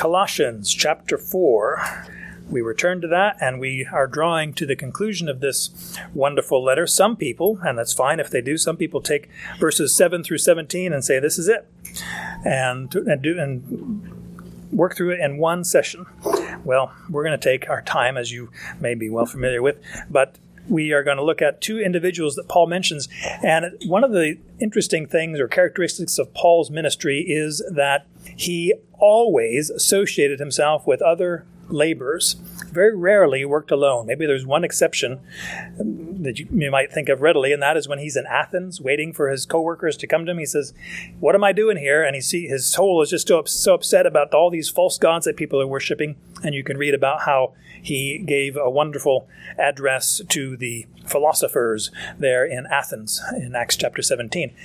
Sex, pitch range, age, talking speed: male, 140-180 Hz, 40-59, 185 wpm